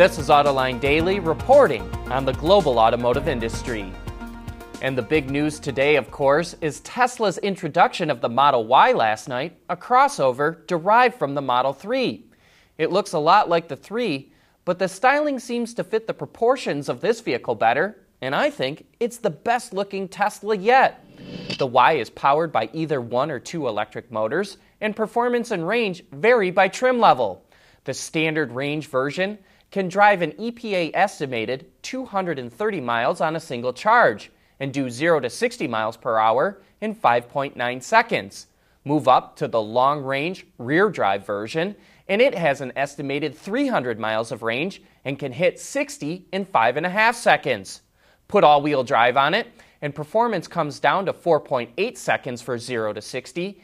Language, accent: English, American